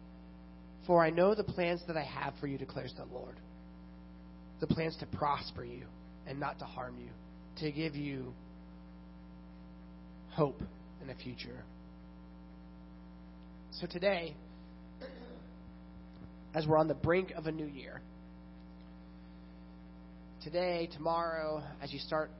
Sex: male